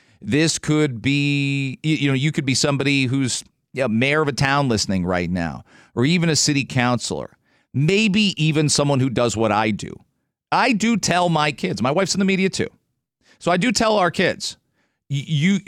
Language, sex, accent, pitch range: English, male, American, 130-170 Hz